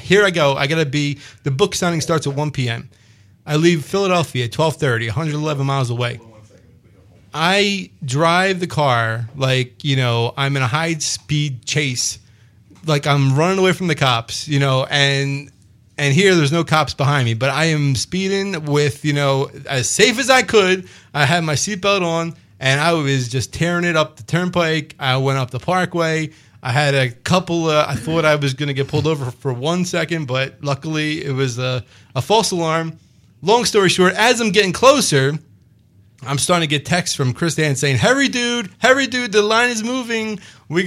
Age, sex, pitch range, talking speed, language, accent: 30-49, male, 135-175 Hz, 195 wpm, English, American